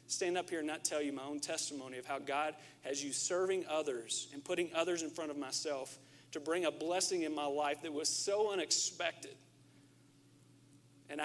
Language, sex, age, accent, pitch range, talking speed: English, male, 40-59, American, 135-165 Hz, 190 wpm